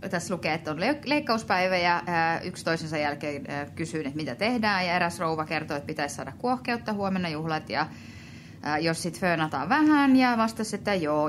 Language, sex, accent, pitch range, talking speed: Finnish, female, native, 165-225 Hz, 165 wpm